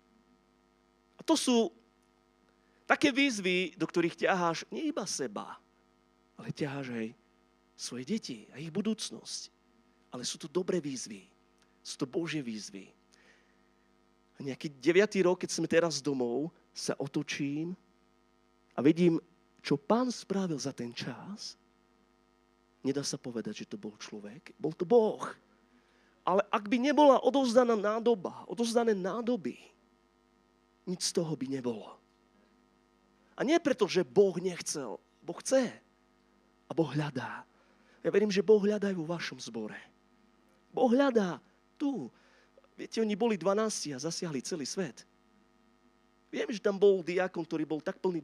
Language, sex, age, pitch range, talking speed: Slovak, male, 30-49, 125-205 Hz, 135 wpm